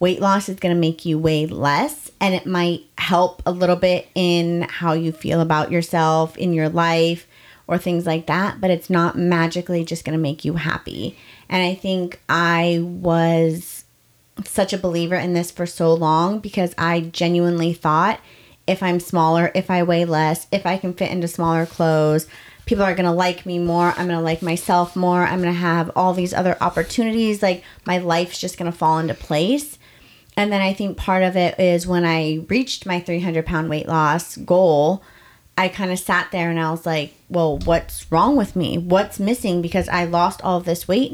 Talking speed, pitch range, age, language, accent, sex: 205 wpm, 165-185 Hz, 30-49, English, American, female